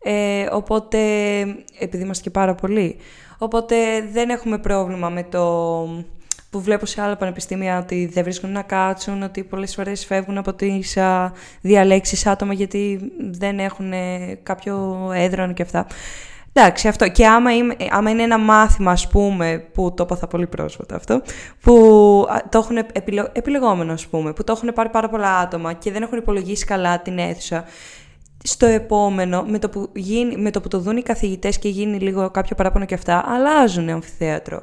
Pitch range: 185-220 Hz